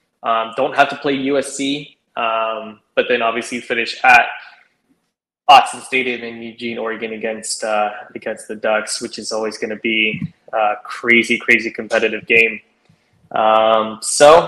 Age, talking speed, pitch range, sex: 20-39, 145 wpm, 120-140 Hz, male